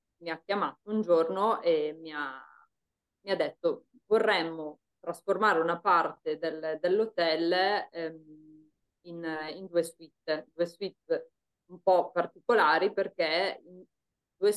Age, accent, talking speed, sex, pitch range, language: 20-39, native, 120 wpm, female, 160-195 Hz, Italian